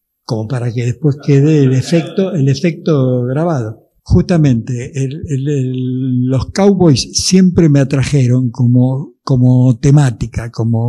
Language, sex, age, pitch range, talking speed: Spanish, male, 60-79, 125-160 Hz, 125 wpm